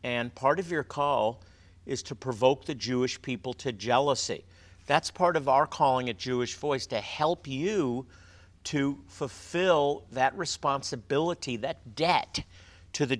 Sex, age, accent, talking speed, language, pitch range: male, 50-69, American, 145 wpm, English, 110-135 Hz